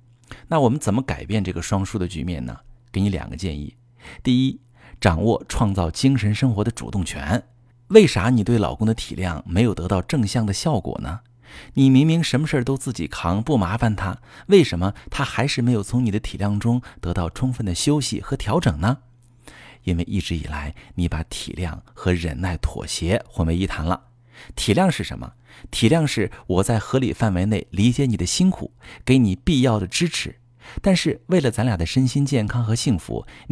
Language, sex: Chinese, male